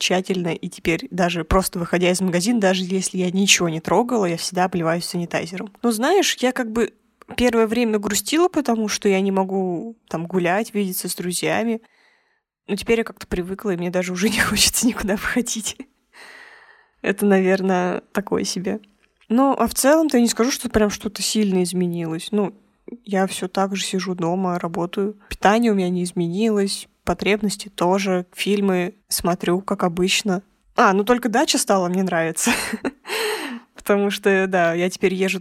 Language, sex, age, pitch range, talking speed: Russian, female, 20-39, 185-220 Hz, 165 wpm